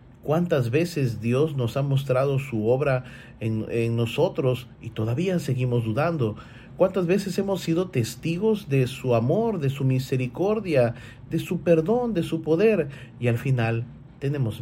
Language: Spanish